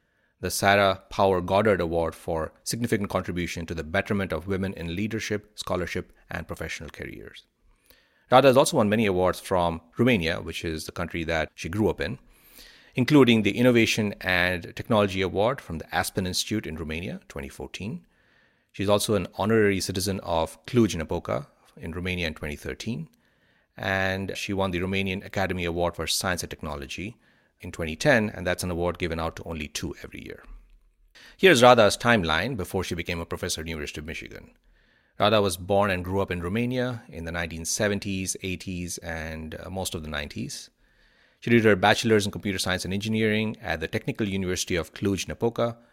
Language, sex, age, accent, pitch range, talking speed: English, male, 30-49, Indian, 85-105 Hz, 170 wpm